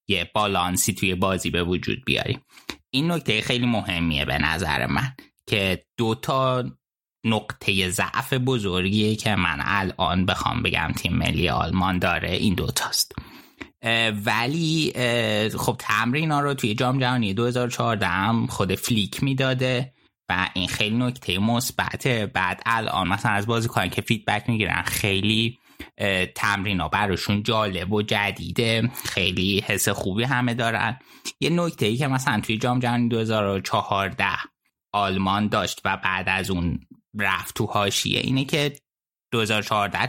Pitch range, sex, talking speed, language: 95-120 Hz, male, 125 wpm, Persian